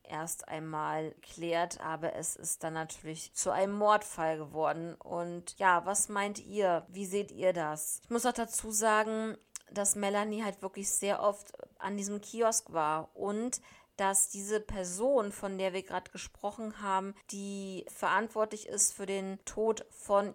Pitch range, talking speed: 180-215 Hz, 155 wpm